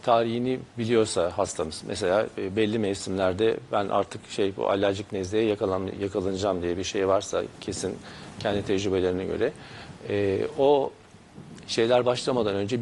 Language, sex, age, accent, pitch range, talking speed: Turkish, male, 50-69, native, 100-120 Hz, 120 wpm